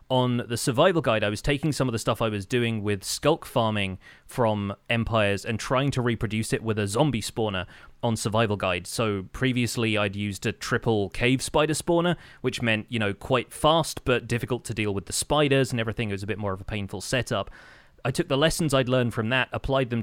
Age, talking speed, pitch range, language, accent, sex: 30-49, 220 wpm, 105-130 Hz, English, British, male